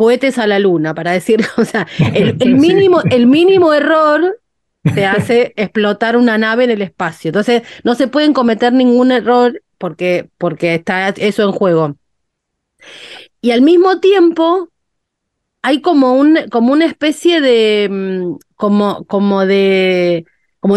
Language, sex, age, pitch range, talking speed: Spanish, female, 30-49, 200-280 Hz, 145 wpm